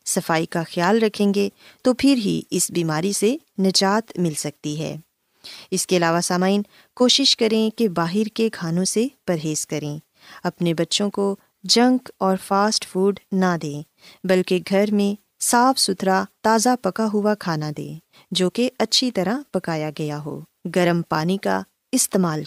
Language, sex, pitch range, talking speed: Urdu, female, 165-215 Hz, 140 wpm